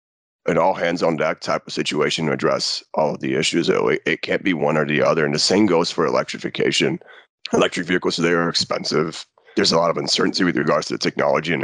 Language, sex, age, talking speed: English, male, 30-49, 205 wpm